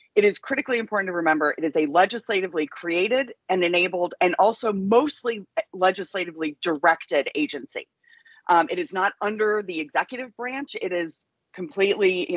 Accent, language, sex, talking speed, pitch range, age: American, English, female, 150 wpm, 155-215 Hz, 30-49